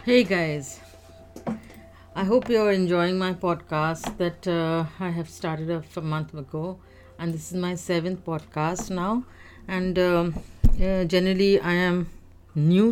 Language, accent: English, Indian